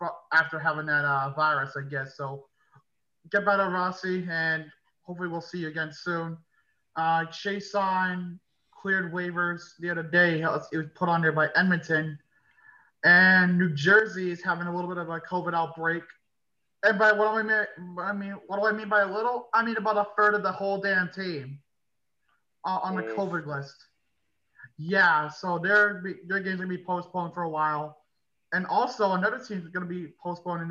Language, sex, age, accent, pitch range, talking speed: English, male, 20-39, American, 160-190 Hz, 180 wpm